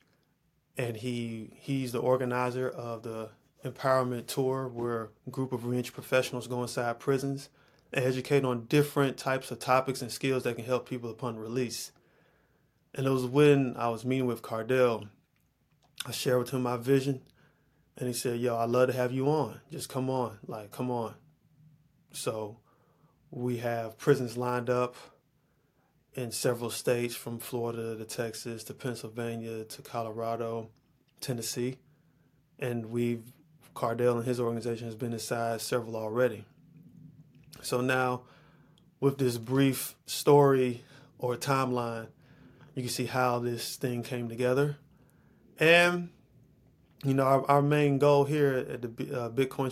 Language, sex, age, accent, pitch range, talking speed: English, male, 20-39, American, 120-140 Hz, 145 wpm